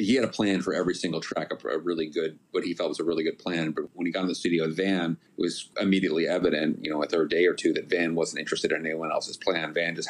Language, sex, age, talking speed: English, male, 40-59, 290 wpm